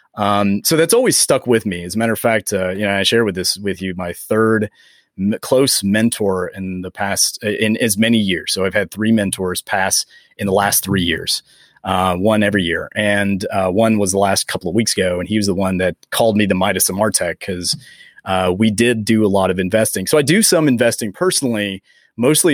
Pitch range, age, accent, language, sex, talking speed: 95-115 Hz, 30-49, American, English, male, 230 wpm